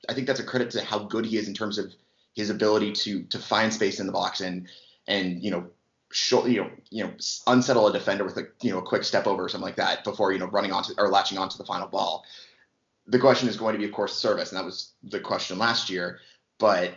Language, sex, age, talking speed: English, male, 30-49, 260 wpm